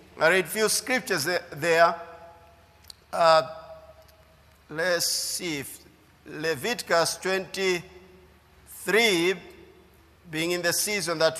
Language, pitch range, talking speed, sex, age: English, 170-215 Hz, 90 wpm, male, 50-69